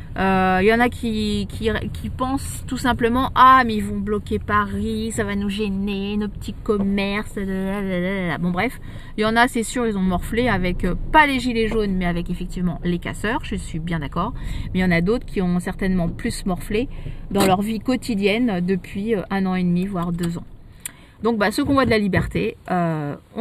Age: 30-49